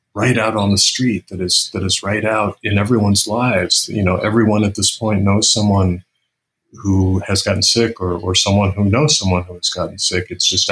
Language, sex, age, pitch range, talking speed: English, male, 40-59, 95-115 Hz, 215 wpm